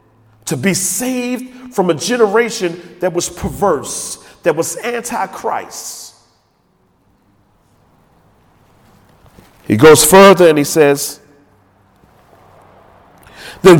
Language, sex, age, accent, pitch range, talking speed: English, male, 40-59, American, 220-310 Hz, 85 wpm